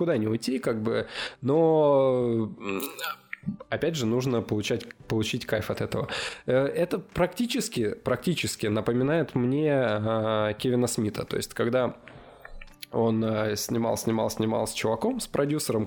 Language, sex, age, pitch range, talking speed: Russian, male, 20-39, 110-135 Hz, 125 wpm